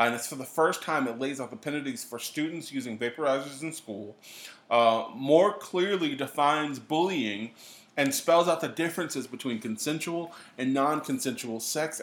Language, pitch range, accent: English, 120-160 Hz, American